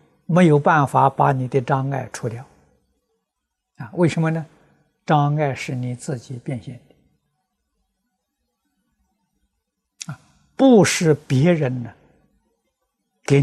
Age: 60-79